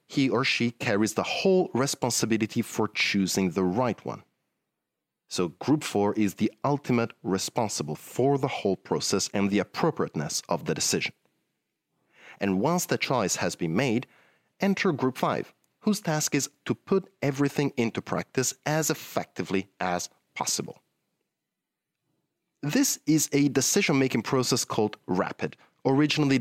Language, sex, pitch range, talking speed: English, male, 115-170 Hz, 135 wpm